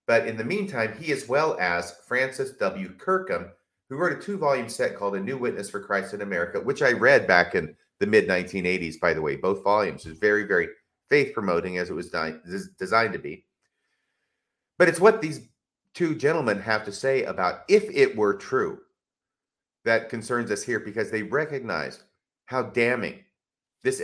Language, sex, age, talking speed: English, male, 40-59, 185 wpm